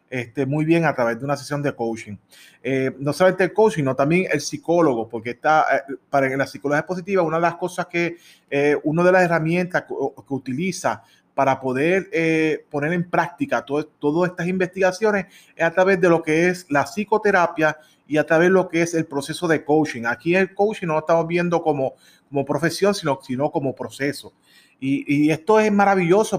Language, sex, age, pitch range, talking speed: Spanish, male, 30-49, 145-185 Hz, 195 wpm